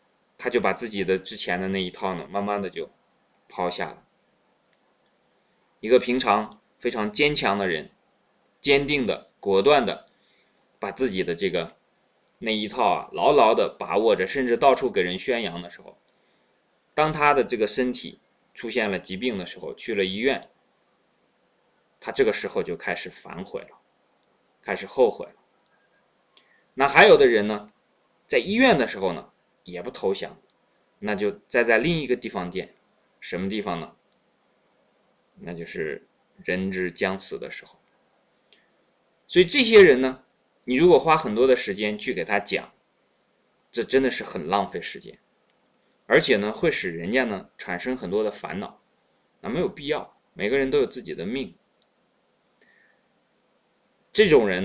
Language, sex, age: Chinese, male, 20-39